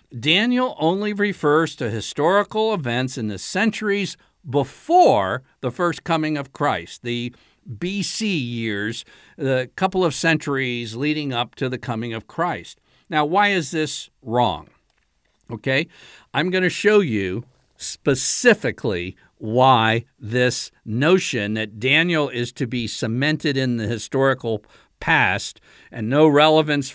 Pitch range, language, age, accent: 115-160 Hz, English, 60-79, American